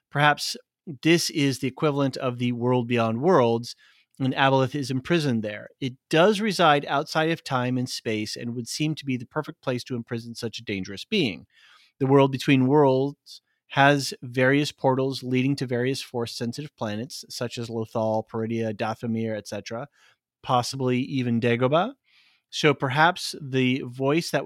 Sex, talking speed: male, 155 wpm